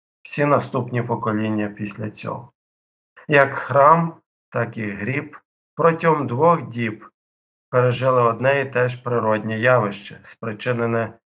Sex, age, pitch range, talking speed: male, 50-69, 110-135 Hz, 110 wpm